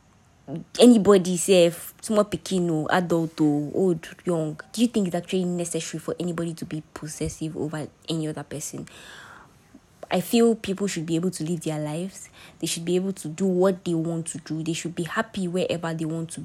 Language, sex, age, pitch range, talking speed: English, female, 20-39, 160-190 Hz, 190 wpm